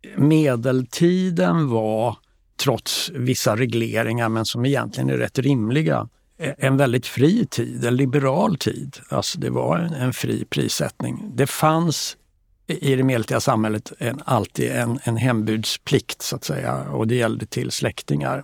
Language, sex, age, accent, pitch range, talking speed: Swedish, male, 60-79, native, 115-140 Hz, 125 wpm